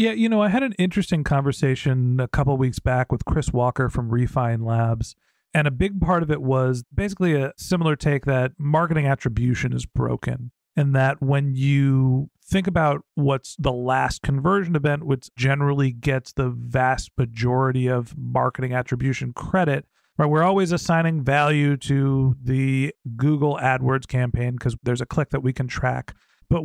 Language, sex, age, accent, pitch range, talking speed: English, male, 40-59, American, 130-155 Hz, 170 wpm